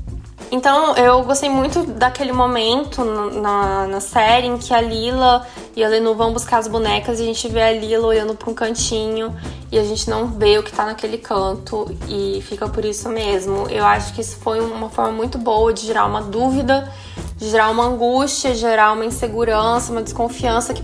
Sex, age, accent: female, 10-29, Brazilian